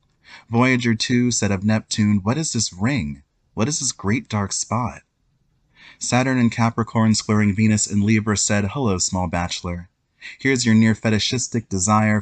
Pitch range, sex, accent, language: 90-110 Hz, male, American, English